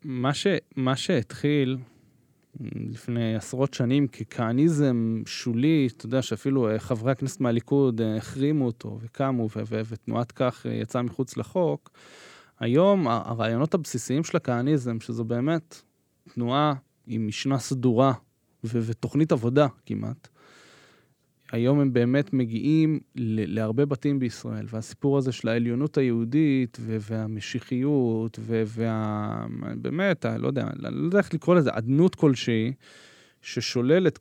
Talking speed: 120 wpm